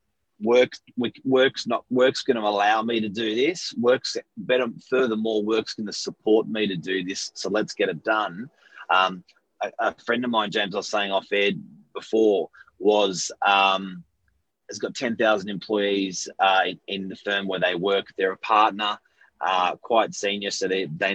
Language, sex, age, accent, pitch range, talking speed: English, male, 30-49, Australian, 95-115 Hz, 175 wpm